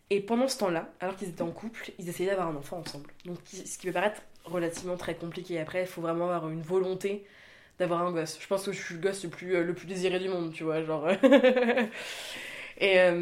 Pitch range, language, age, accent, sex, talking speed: 165-200 Hz, French, 20-39, French, female, 240 wpm